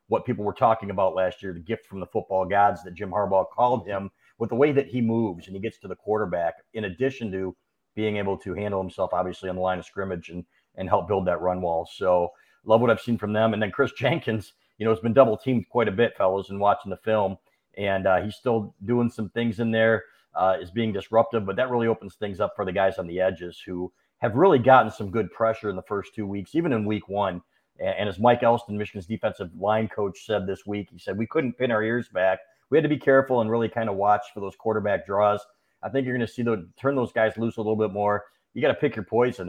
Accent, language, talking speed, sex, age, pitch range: American, English, 260 wpm, male, 40-59, 95-115 Hz